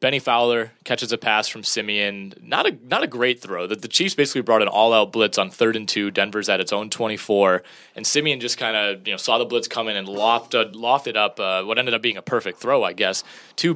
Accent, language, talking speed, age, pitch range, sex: American, English, 260 wpm, 20-39, 100-115 Hz, male